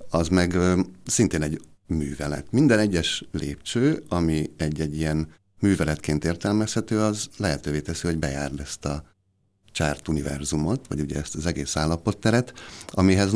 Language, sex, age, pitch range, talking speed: Hungarian, male, 60-79, 75-95 Hz, 130 wpm